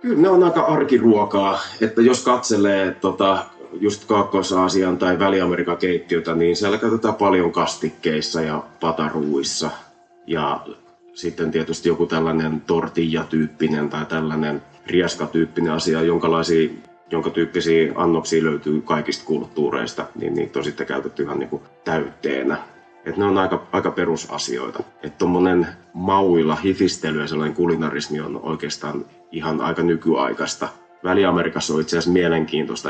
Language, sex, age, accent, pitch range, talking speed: Finnish, male, 30-49, native, 80-95 Hz, 120 wpm